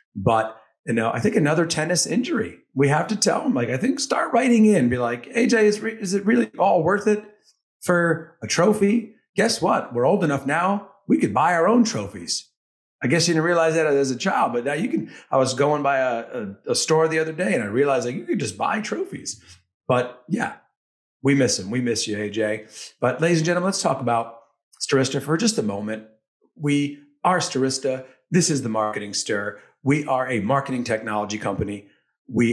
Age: 40-59